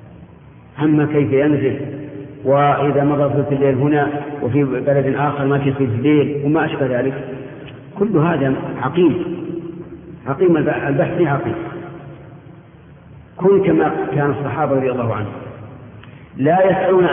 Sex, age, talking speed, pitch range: male, 50-69, 120 wpm, 135-155 Hz